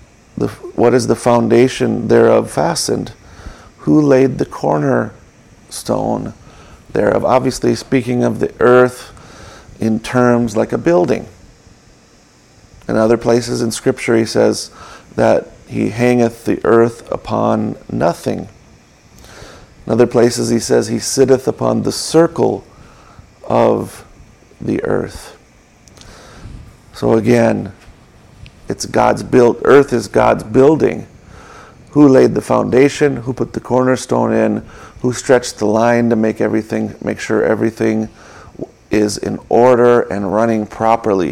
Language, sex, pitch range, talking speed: English, male, 110-125 Hz, 120 wpm